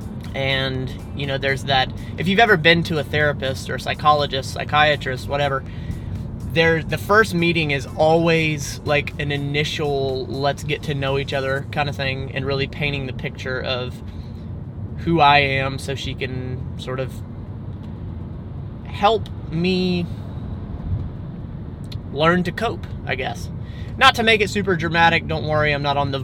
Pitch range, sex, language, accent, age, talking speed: 115-145 Hz, male, English, American, 30-49, 155 wpm